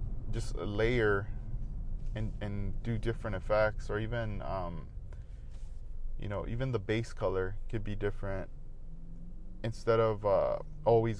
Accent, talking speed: American, 130 wpm